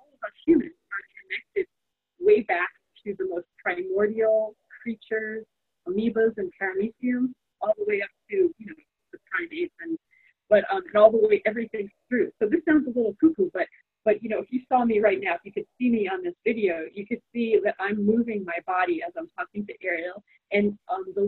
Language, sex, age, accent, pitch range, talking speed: English, female, 30-49, American, 205-335 Hz, 200 wpm